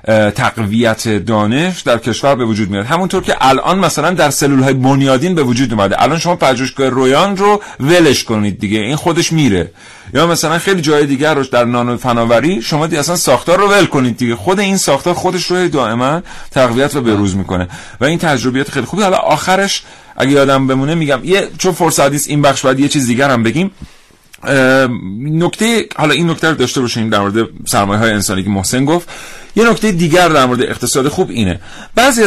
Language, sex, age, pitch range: Persian, male, 40-59, 115-165 Hz